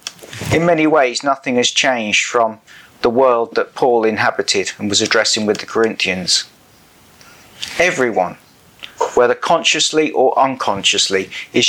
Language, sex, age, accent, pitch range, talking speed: English, male, 40-59, British, 115-150 Hz, 125 wpm